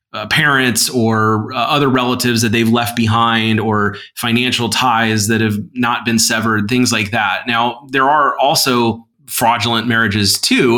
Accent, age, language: American, 30-49, English